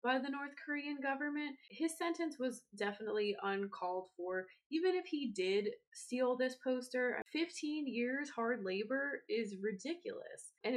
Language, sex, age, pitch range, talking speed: English, female, 20-39, 200-275 Hz, 140 wpm